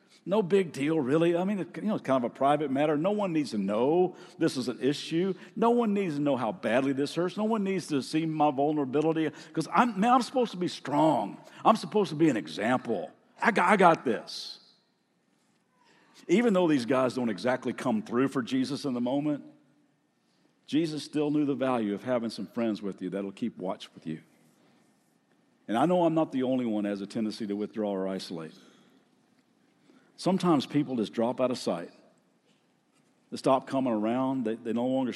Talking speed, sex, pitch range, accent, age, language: 200 wpm, male, 120-180 Hz, American, 50-69, English